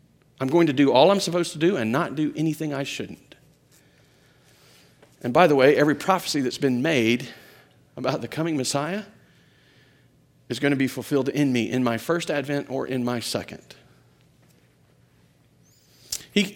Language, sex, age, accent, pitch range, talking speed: English, male, 40-59, American, 135-175 Hz, 160 wpm